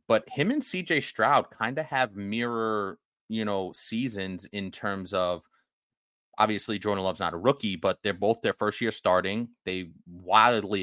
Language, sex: English, male